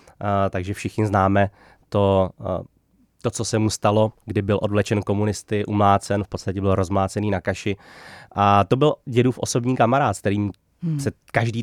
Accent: native